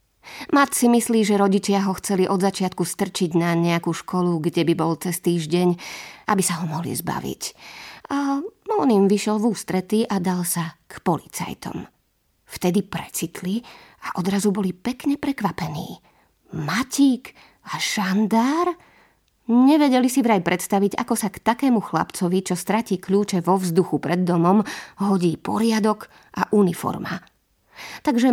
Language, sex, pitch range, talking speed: Slovak, female, 180-225 Hz, 140 wpm